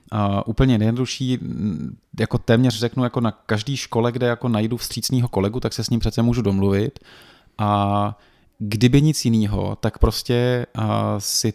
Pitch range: 100-120 Hz